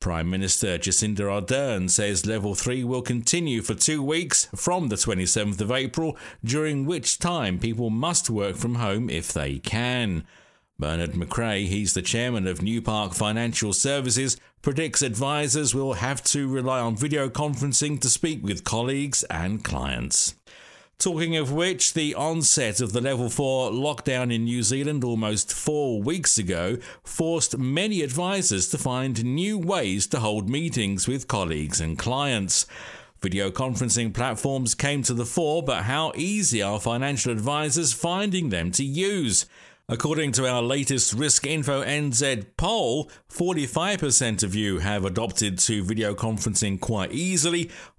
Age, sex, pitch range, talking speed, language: 50-69, male, 105-145 Hz, 150 wpm, English